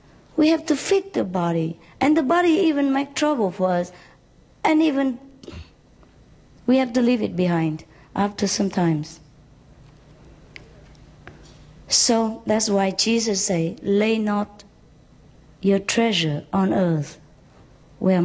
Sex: female